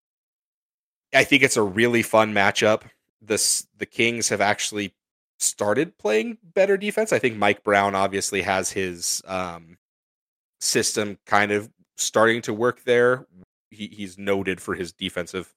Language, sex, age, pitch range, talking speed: English, male, 30-49, 90-105 Hz, 145 wpm